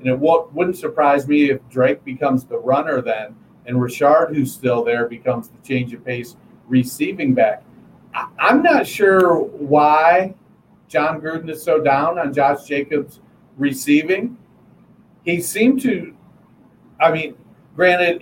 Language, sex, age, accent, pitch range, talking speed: English, male, 50-69, American, 135-180 Hz, 140 wpm